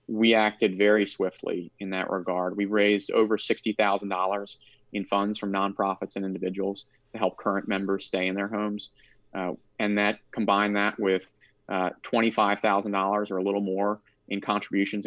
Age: 30-49